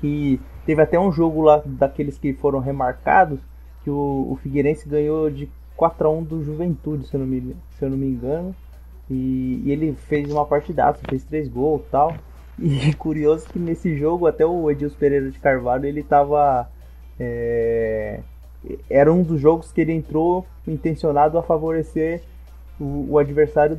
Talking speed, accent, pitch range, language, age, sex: 170 wpm, Brazilian, 135-160 Hz, Portuguese, 20-39, male